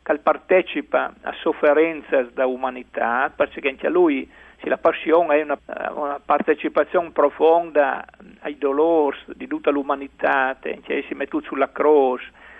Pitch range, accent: 145-170 Hz, native